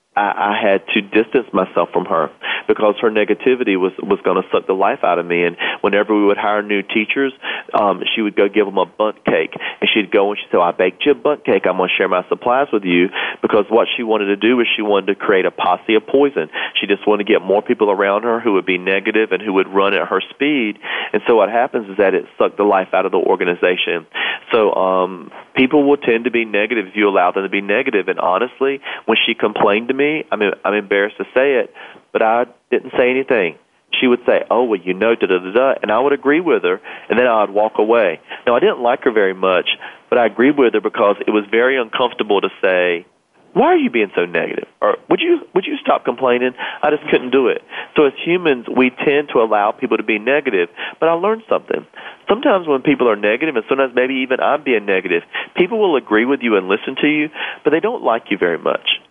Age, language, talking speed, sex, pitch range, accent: 40-59, English, 245 wpm, male, 100-150 Hz, American